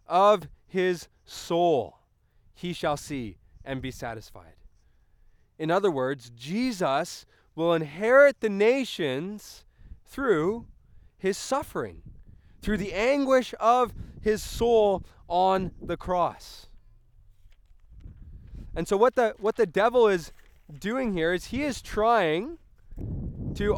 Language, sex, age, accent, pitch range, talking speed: English, male, 20-39, American, 160-225 Hz, 110 wpm